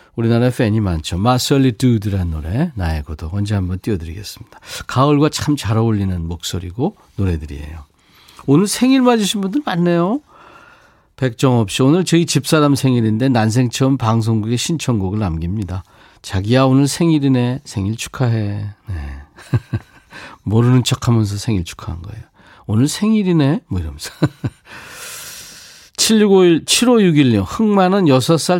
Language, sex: Korean, male